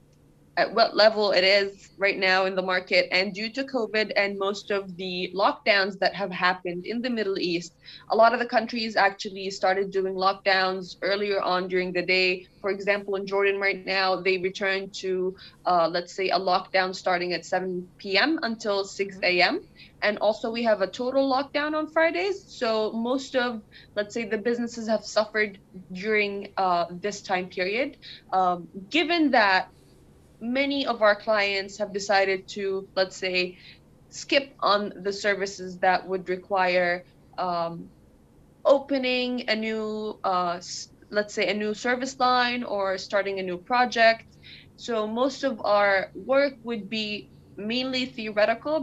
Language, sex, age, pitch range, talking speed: English, female, 20-39, 185-225 Hz, 155 wpm